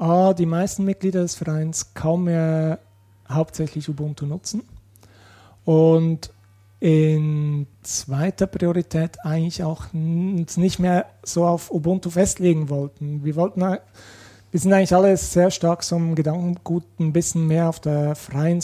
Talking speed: 130 wpm